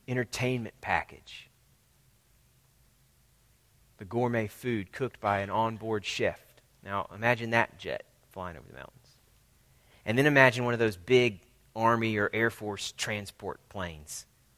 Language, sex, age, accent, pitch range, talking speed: English, male, 30-49, American, 105-125 Hz, 130 wpm